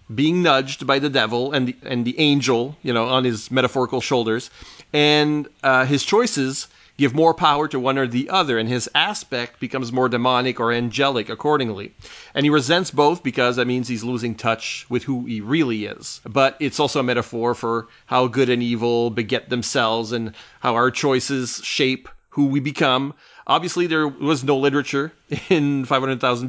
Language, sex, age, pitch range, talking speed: English, male, 40-59, 120-140 Hz, 175 wpm